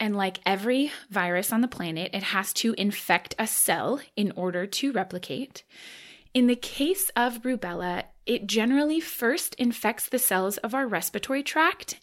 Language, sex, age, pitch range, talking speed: English, female, 20-39, 190-250 Hz, 160 wpm